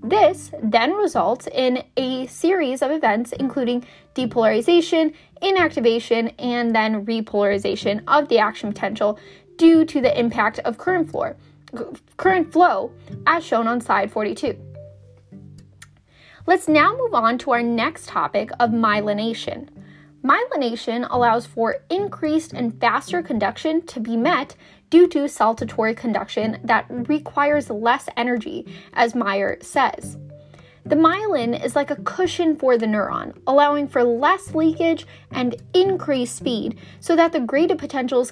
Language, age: English, 10-29